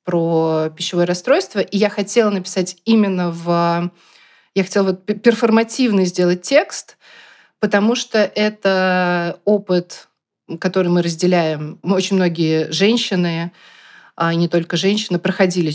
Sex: female